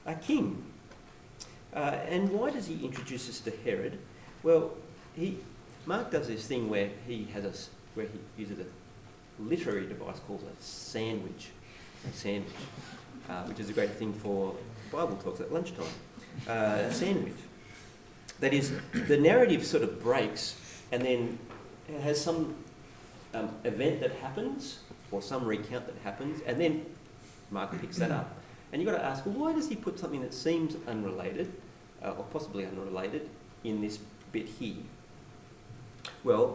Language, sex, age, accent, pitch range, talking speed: English, male, 40-59, Australian, 105-155 Hz, 160 wpm